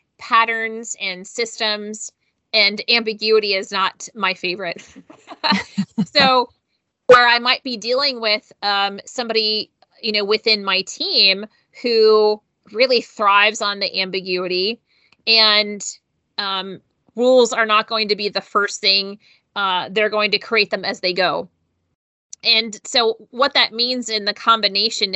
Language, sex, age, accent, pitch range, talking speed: English, female, 30-49, American, 190-225 Hz, 135 wpm